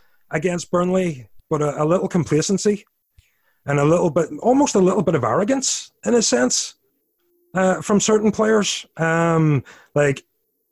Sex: male